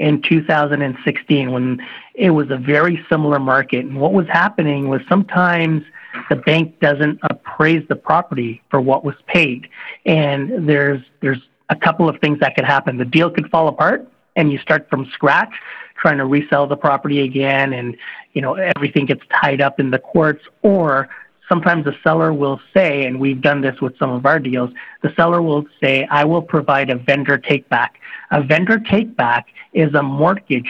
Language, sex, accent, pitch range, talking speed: English, male, American, 140-165 Hz, 185 wpm